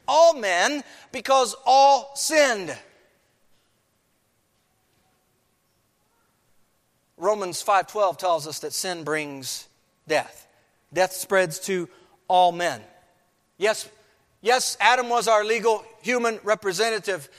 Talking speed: 90 wpm